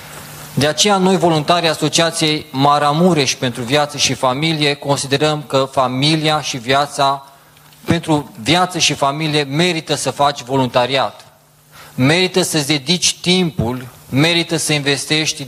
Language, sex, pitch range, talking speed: Romanian, male, 135-155 Hz, 115 wpm